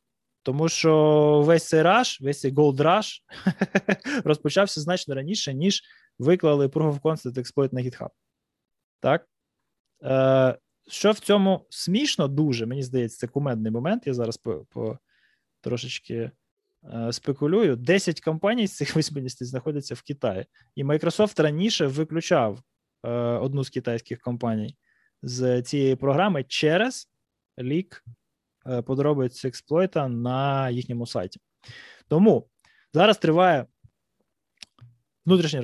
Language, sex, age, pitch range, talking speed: Ukrainian, male, 20-39, 125-170 Hz, 120 wpm